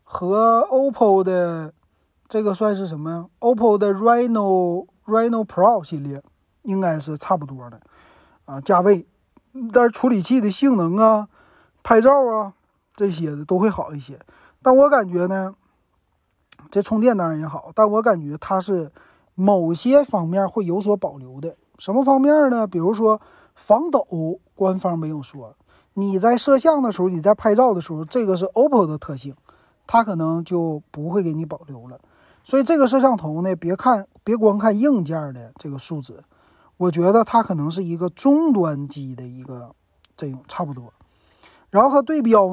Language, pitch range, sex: Chinese, 155-220 Hz, male